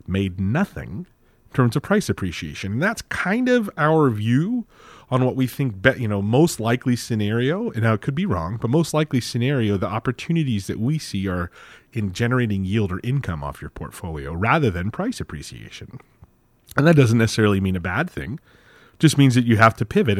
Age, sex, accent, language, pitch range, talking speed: 30-49, male, American, English, 100-135 Hz, 195 wpm